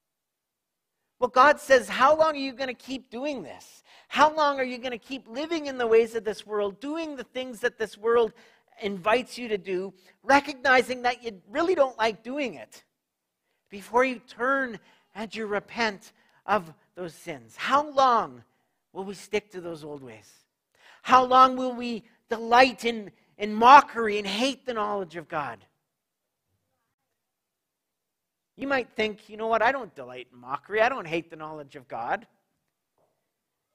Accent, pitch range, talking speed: American, 195-250 Hz, 165 wpm